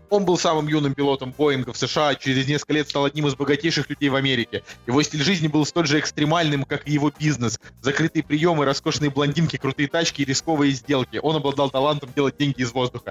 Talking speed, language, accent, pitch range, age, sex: 205 wpm, Russian, native, 130-160 Hz, 20-39, male